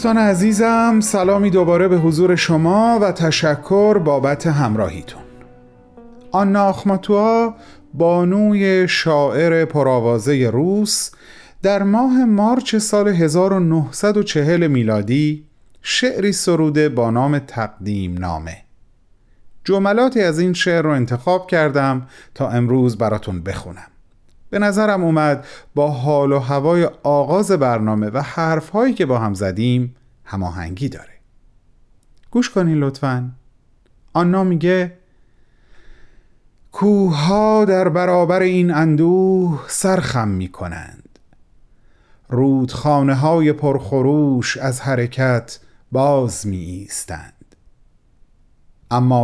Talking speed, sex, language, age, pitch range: 95 wpm, male, Persian, 40-59, 120-185 Hz